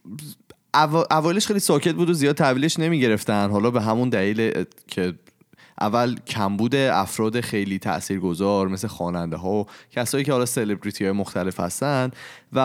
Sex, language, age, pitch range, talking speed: male, Persian, 30-49, 95-130 Hz, 150 wpm